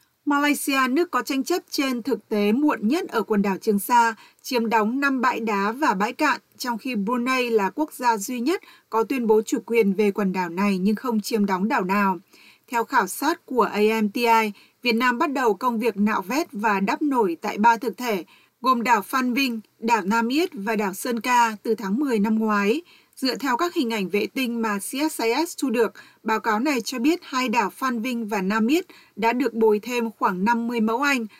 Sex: female